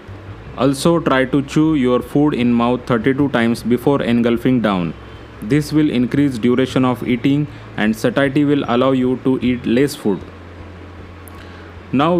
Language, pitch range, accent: Marathi, 105-135 Hz, native